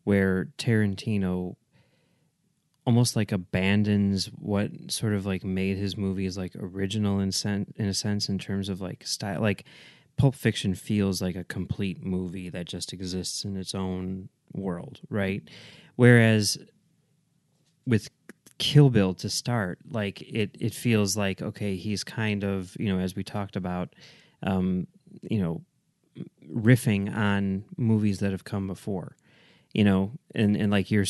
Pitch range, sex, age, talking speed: 95-115 Hz, male, 30-49, 150 wpm